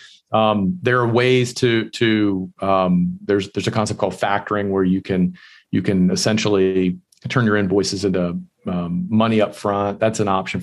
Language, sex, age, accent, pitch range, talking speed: English, male, 40-59, American, 95-115 Hz, 170 wpm